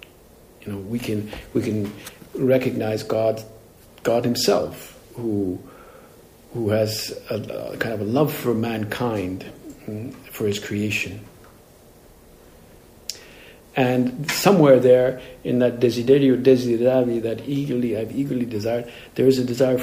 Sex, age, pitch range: male, 50-69, 110-130 Hz